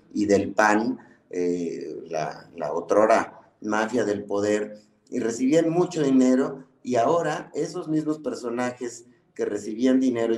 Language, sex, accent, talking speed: Spanish, male, Mexican, 125 wpm